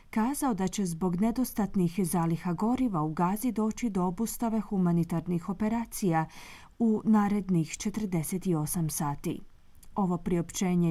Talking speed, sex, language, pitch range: 110 wpm, female, Croatian, 170-225 Hz